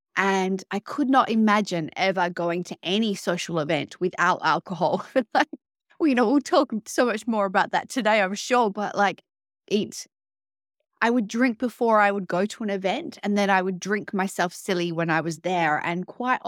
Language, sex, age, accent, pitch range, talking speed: English, female, 20-39, Australian, 175-220 Hz, 195 wpm